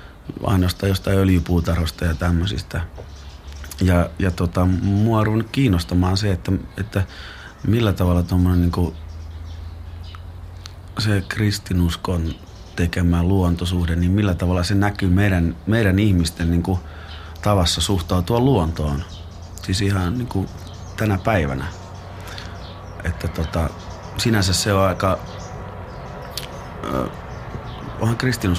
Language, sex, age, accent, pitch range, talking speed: Finnish, male, 30-49, native, 85-95 Hz, 100 wpm